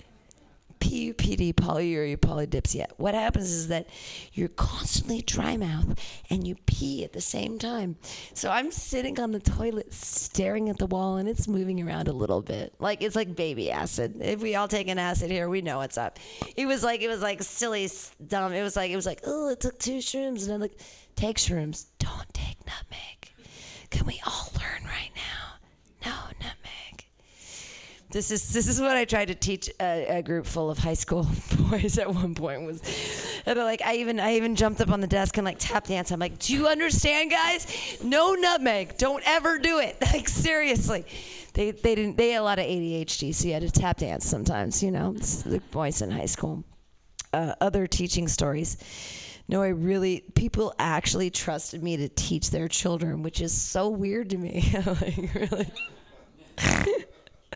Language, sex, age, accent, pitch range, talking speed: English, female, 40-59, American, 170-230 Hz, 190 wpm